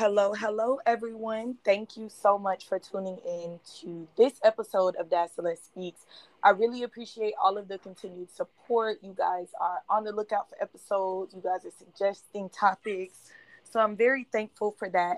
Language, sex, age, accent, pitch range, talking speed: English, female, 20-39, American, 185-235 Hz, 170 wpm